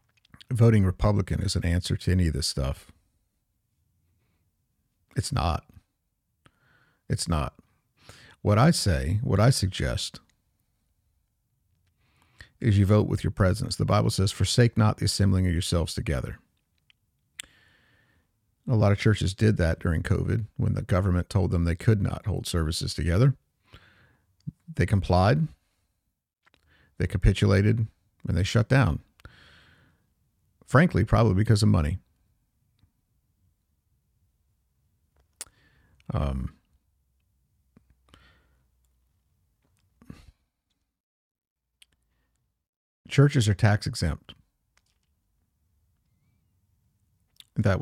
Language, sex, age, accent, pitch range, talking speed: English, male, 50-69, American, 85-110 Hz, 90 wpm